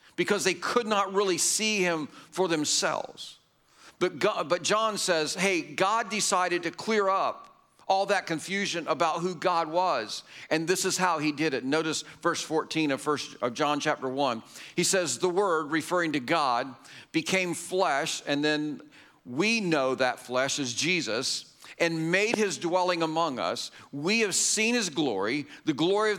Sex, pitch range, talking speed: male, 160-200 Hz, 170 wpm